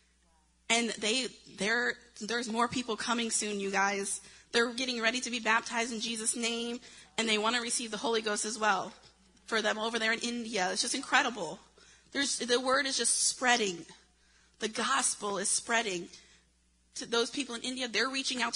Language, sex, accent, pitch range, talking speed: English, female, American, 190-245 Hz, 180 wpm